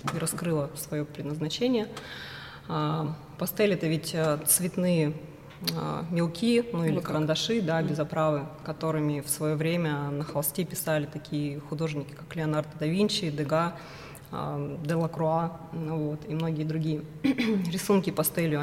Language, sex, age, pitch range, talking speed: Russian, female, 20-39, 150-170 Hz, 115 wpm